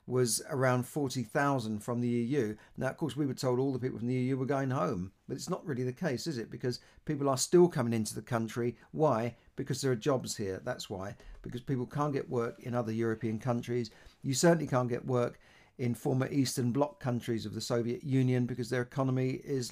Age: 50-69